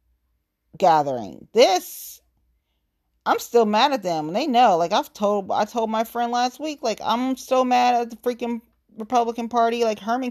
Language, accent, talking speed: English, American, 175 wpm